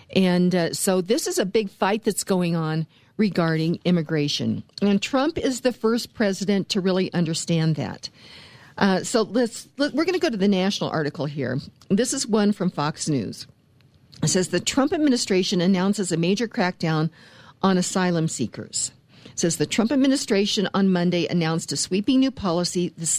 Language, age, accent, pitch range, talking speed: English, 50-69, American, 165-210 Hz, 170 wpm